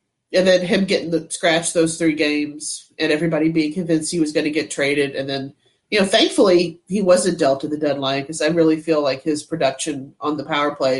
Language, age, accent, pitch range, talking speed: English, 30-49, American, 150-185 Hz, 225 wpm